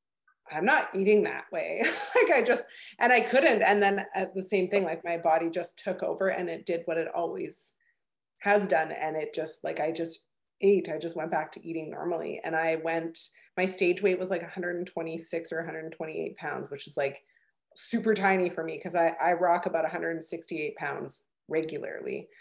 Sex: female